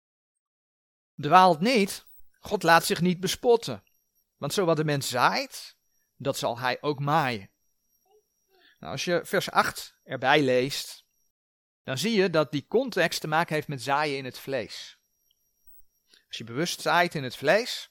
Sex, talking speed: male, 155 wpm